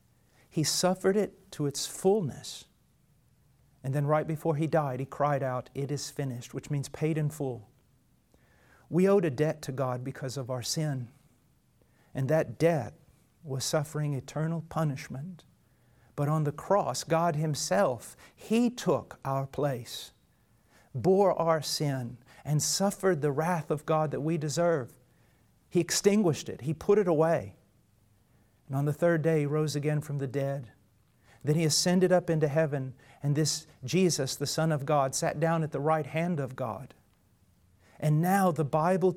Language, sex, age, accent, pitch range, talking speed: English, male, 50-69, American, 135-165 Hz, 160 wpm